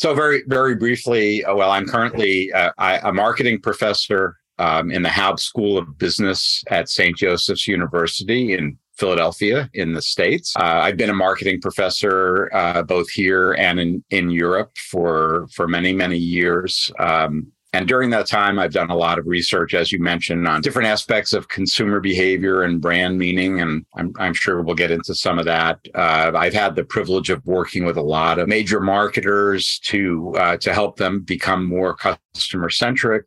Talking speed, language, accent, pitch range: 180 wpm, English, American, 85-100 Hz